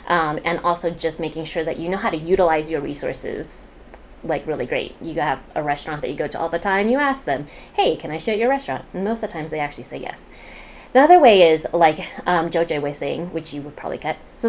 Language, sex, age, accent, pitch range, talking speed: English, female, 30-49, American, 155-195 Hz, 255 wpm